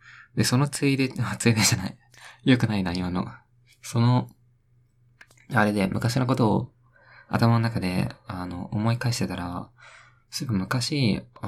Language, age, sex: Japanese, 20-39, male